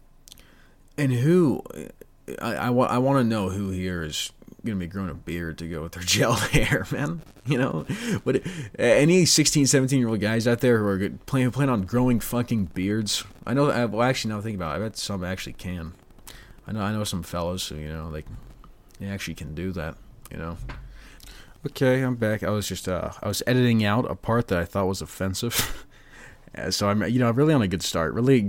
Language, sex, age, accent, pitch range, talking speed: English, male, 30-49, American, 95-120 Hz, 215 wpm